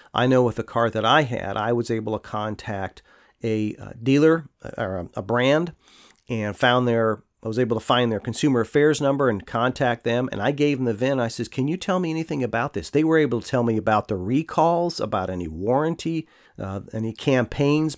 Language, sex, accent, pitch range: English, male, American, 110-150 Hz